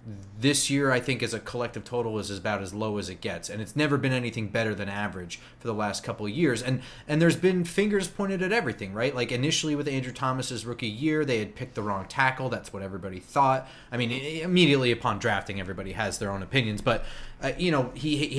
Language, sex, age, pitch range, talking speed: English, male, 30-49, 110-150 Hz, 230 wpm